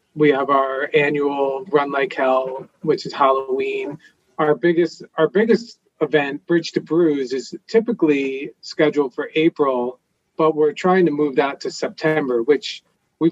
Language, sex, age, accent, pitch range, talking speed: English, male, 40-59, American, 130-165 Hz, 150 wpm